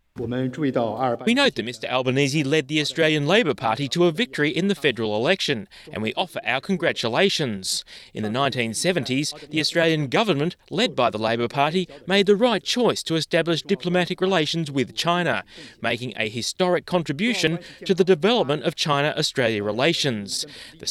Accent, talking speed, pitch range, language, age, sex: Australian, 155 wpm, 100-160 Hz, Romanian, 20-39, male